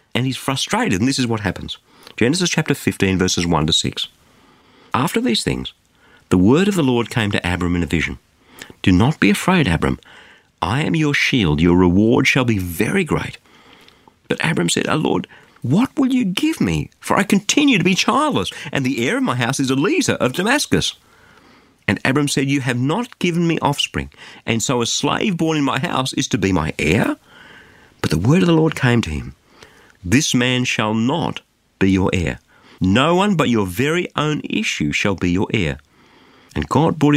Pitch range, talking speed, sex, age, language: 90-145 Hz, 195 wpm, male, 50-69, English